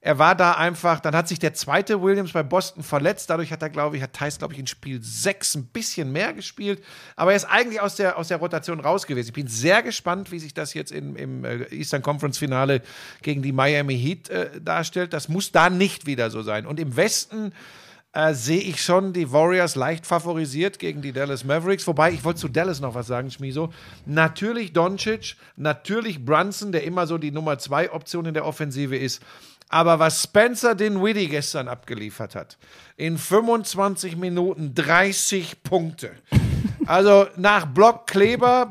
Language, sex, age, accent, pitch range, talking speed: German, male, 50-69, German, 150-200 Hz, 185 wpm